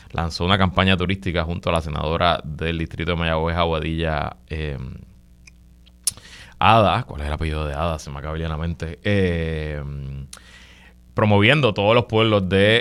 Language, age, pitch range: Spanish, 20-39, 75-90 Hz